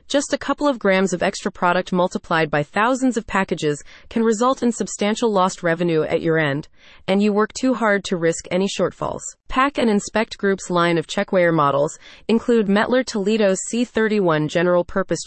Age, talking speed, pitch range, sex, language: 30-49, 175 wpm, 170-230 Hz, female, English